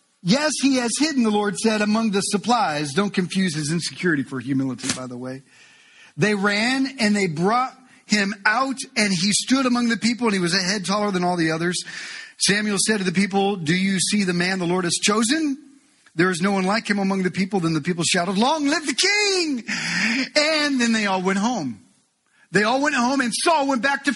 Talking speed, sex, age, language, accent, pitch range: 220 wpm, male, 40-59, English, American, 190-265 Hz